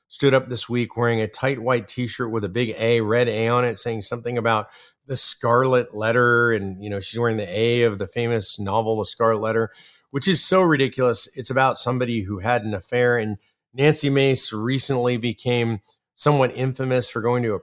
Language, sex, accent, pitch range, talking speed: English, male, American, 115-135 Hz, 200 wpm